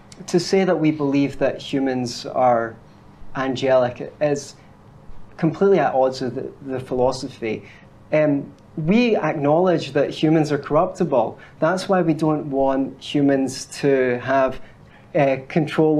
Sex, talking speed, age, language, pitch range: male, 130 wpm, 30-49, English, 135-165 Hz